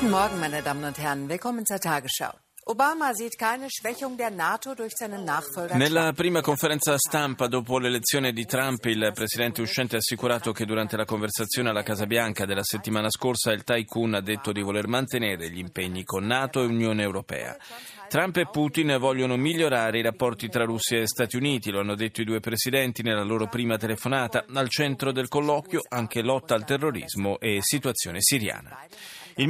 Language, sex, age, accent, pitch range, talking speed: Italian, male, 30-49, native, 105-135 Hz, 175 wpm